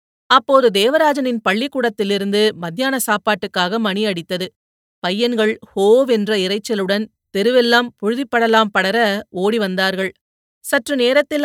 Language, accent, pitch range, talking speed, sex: Tamil, native, 195-250 Hz, 90 wpm, female